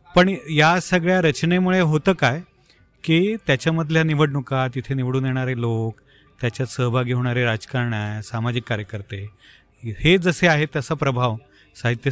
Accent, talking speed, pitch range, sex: native, 90 wpm, 120-155 Hz, male